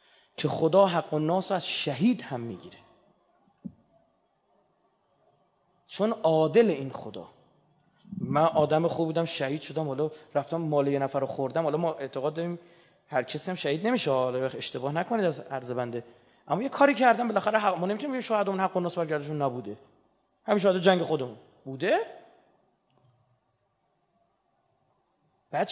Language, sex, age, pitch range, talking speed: Persian, male, 30-49, 145-195 Hz, 135 wpm